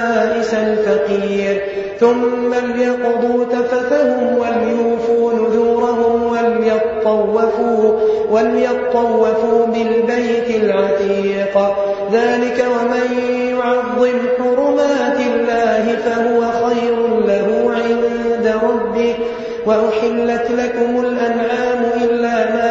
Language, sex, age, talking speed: French, male, 30-49, 65 wpm